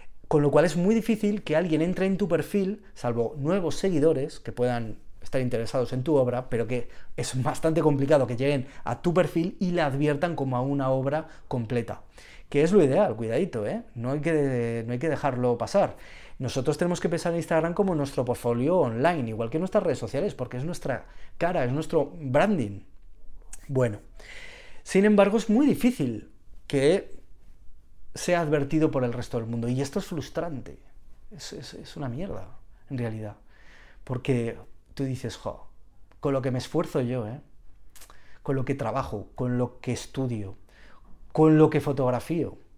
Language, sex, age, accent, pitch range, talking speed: Spanish, male, 30-49, Spanish, 115-165 Hz, 175 wpm